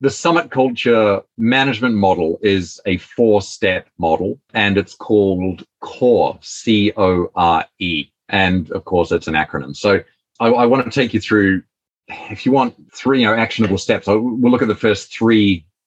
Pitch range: 95-130 Hz